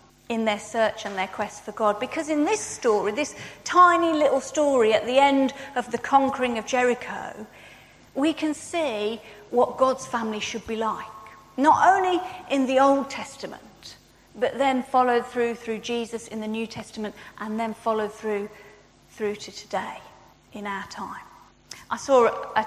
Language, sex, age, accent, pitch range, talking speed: English, female, 40-59, British, 215-270 Hz, 165 wpm